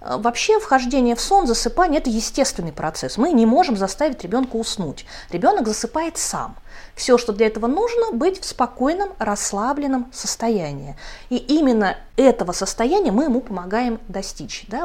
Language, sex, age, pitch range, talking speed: Russian, female, 30-49, 195-260 Hz, 140 wpm